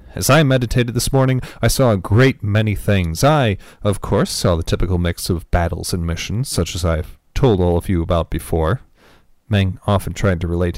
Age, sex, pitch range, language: 40-59, male, 85-115 Hz, English